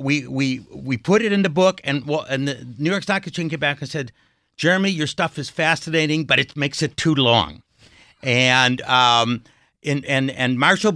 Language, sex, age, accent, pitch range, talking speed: English, male, 60-79, American, 120-160 Hz, 210 wpm